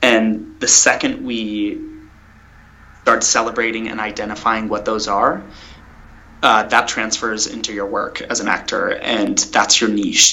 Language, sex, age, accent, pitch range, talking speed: English, male, 20-39, American, 100-120 Hz, 140 wpm